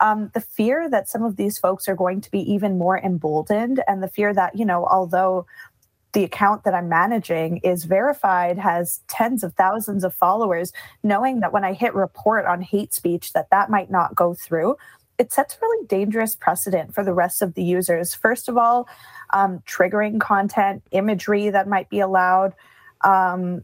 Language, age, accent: English, 20-39, American